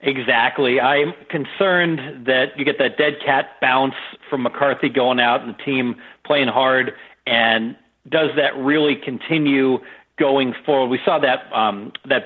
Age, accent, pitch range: 40-59, American, 120-145 Hz